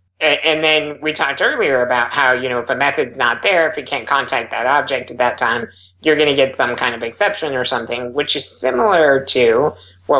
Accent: American